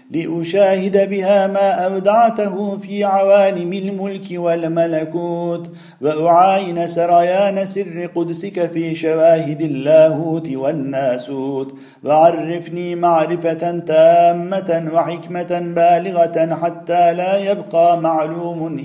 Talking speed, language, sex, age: 80 wpm, Turkish, male, 50-69